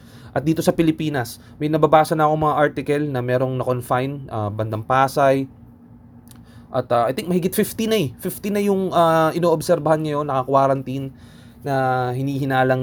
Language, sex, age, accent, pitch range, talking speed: Filipino, male, 20-39, native, 120-145 Hz, 165 wpm